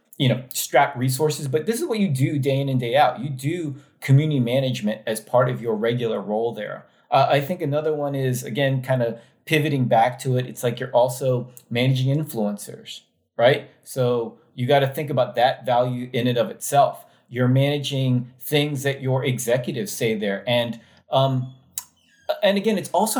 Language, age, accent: English, 30-49, American